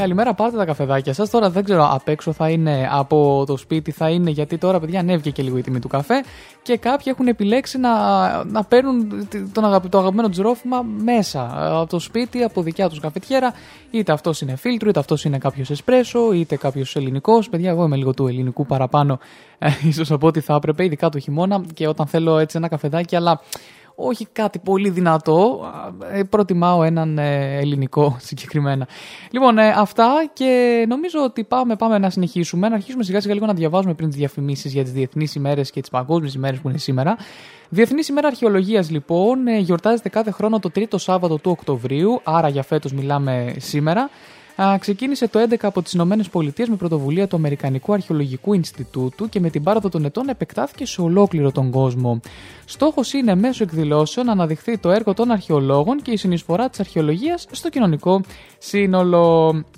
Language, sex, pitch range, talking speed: Greek, male, 150-215 Hz, 180 wpm